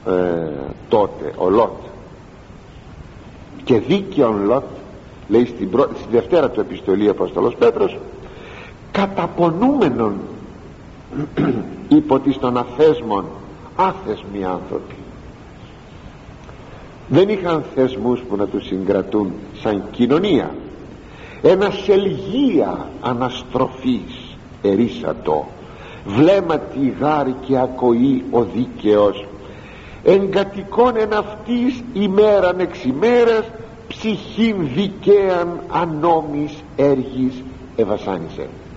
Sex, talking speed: male, 80 wpm